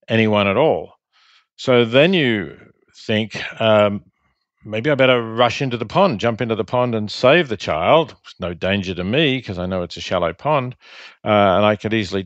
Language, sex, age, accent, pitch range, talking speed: English, male, 50-69, Australian, 100-135 Hz, 190 wpm